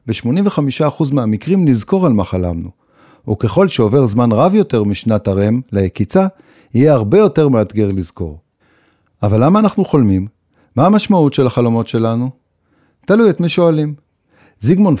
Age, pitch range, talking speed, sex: 50-69, 110-170 Hz, 130 wpm, male